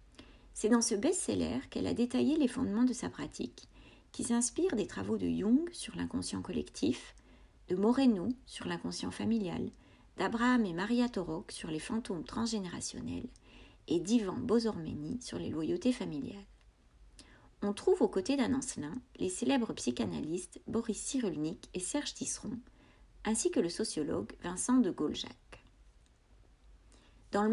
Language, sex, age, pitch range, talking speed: French, female, 40-59, 190-255 Hz, 135 wpm